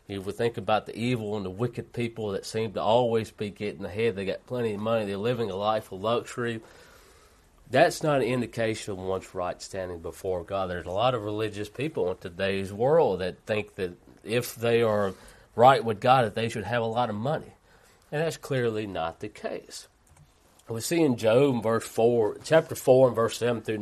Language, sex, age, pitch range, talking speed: English, male, 40-59, 110-130 Hz, 205 wpm